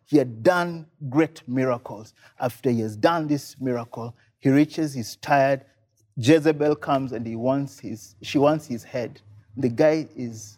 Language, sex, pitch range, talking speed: English, male, 125-160 Hz, 160 wpm